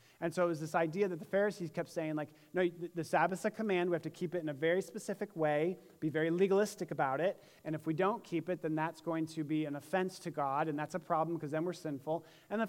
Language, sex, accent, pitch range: English, male, American, 160-195 Hz